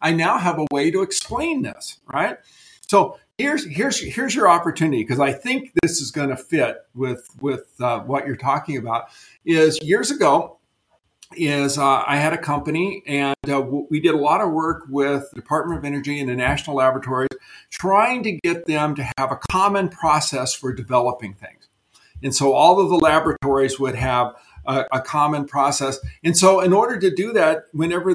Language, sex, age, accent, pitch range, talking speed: English, male, 50-69, American, 140-185 Hz, 190 wpm